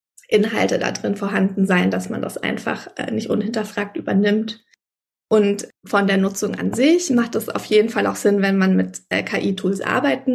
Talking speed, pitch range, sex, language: 185 wpm, 190-230 Hz, female, German